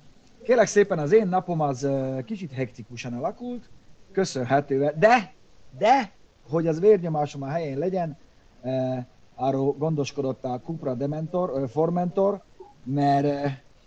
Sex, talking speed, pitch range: male, 120 wpm, 120-170 Hz